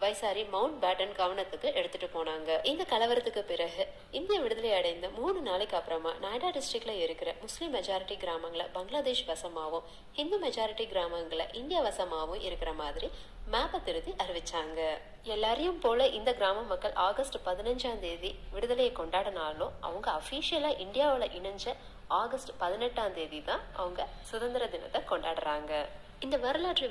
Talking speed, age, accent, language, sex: 60 wpm, 30-49, native, Tamil, female